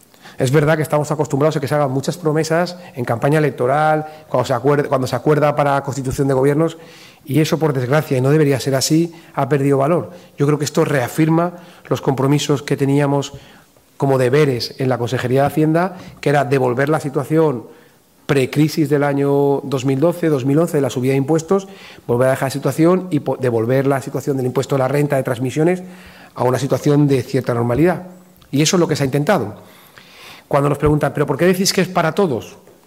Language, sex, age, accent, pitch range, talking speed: Spanish, male, 40-59, Spanish, 135-155 Hz, 195 wpm